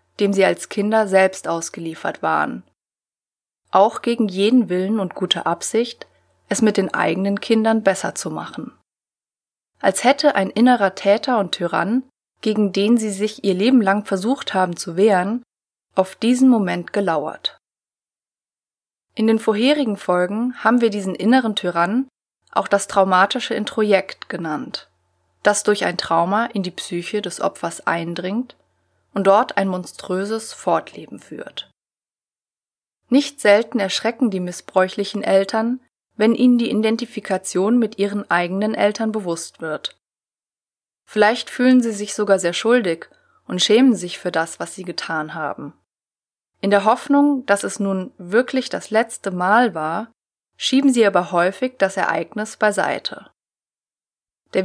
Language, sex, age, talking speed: German, female, 20-39, 135 wpm